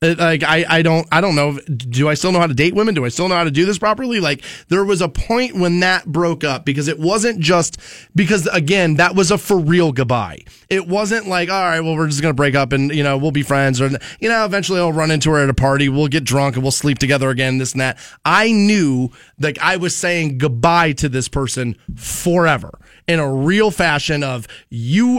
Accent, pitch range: American, 140-180 Hz